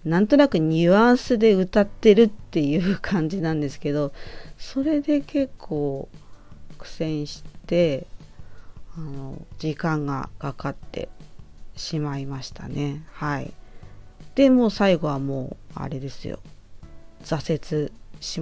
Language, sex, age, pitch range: Japanese, female, 40-59, 140-195 Hz